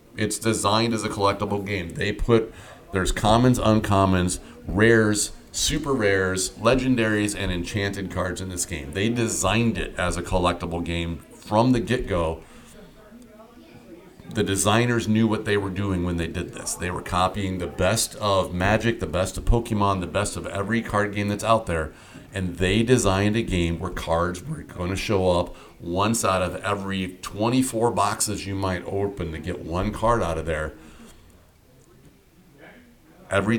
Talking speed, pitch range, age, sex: 160 wpm, 90-110 Hz, 40-59, male